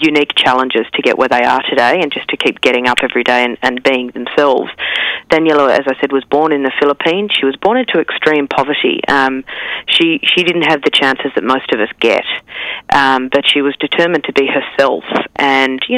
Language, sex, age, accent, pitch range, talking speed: English, female, 40-59, Australian, 130-155 Hz, 215 wpm